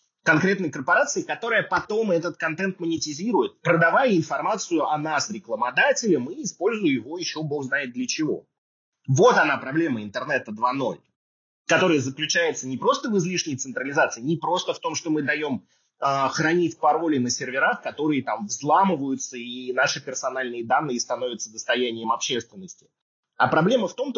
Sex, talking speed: male, 145 wpm